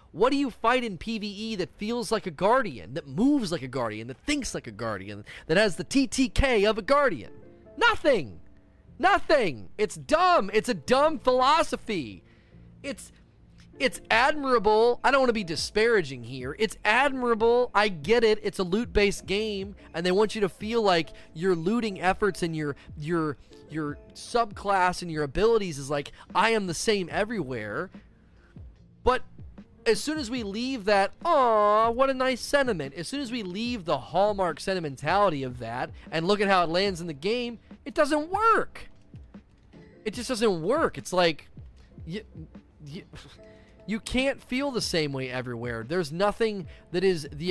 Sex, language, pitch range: male, English, 160-230 Hz